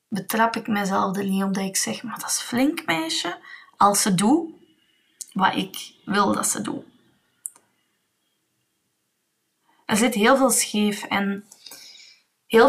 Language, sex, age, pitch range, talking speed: Dutch, female, 20-39, 200-250 Hz, 145 wpm